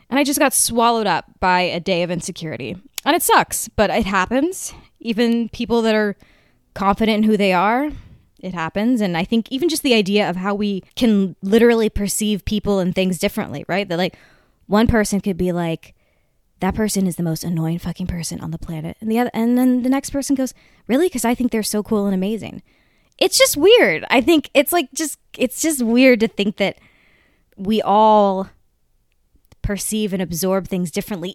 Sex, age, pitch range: female, 20-39, 190-265 Hz